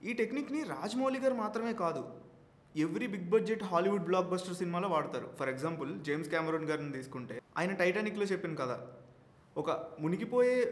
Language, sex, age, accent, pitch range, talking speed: Telugu, male, 20-39, native, 160-210 Hz, 145 wpm